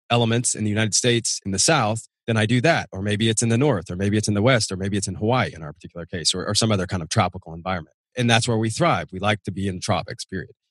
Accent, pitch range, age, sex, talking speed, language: American, 100-125 Hz, 30-49, male, 295 wpm, English